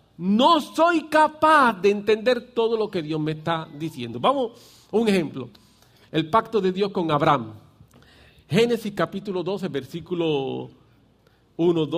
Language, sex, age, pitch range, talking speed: English, male, 40-59, 140-230 Hz, 135 wpm